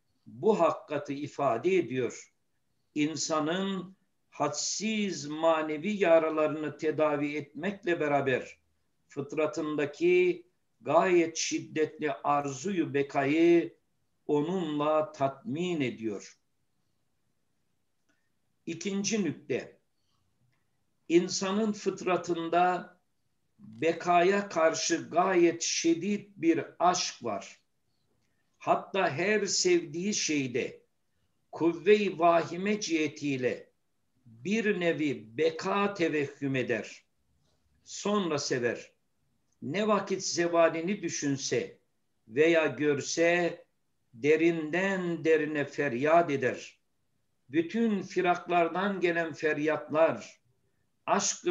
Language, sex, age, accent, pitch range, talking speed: Turkish, male, 60-79, native, 150-190 Hz, 70 wpm